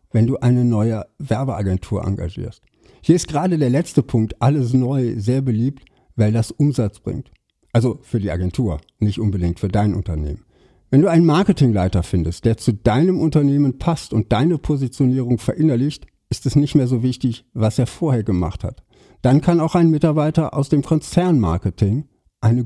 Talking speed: 165 wpm